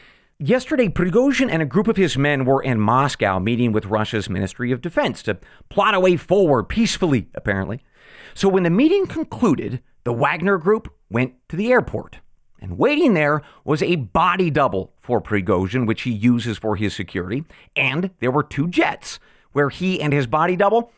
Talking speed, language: 175 wpm, English